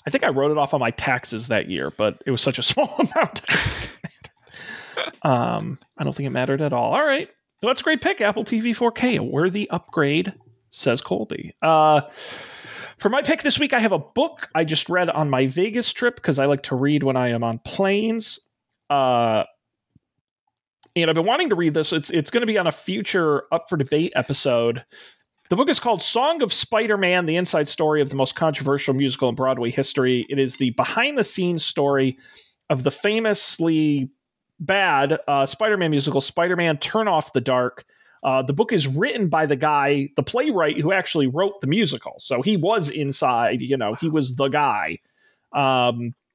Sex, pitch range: male, 135-190 Hz